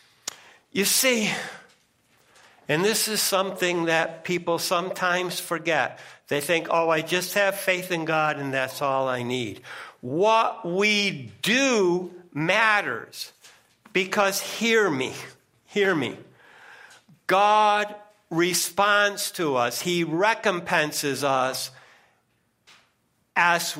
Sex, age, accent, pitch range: male, 60-79, American, 155-200 Hz